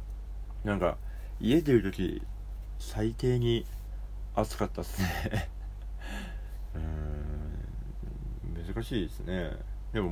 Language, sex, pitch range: Japanese, male, 80-100 Hz